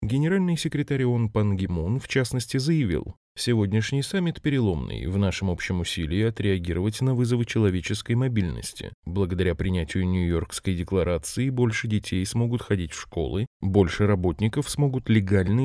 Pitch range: 90-125 Hz